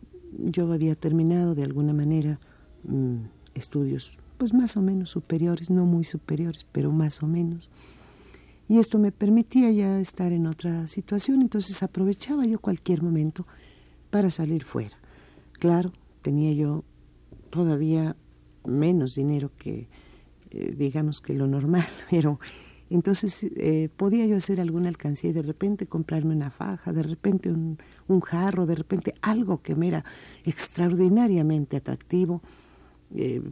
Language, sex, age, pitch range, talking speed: Spanish, female, 50-69, 150-195 Hz, 135 wpm